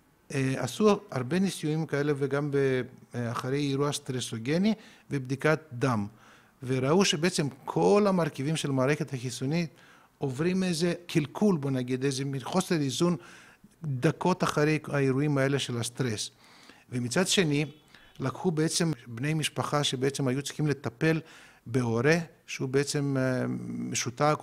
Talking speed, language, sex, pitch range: 115 wpm, Hebrew, male, 130-170 Hz